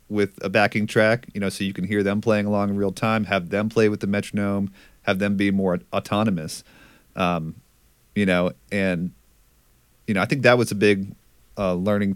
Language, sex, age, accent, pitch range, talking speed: English, male, 30-49, American, 95-110 Hz, 200 wpm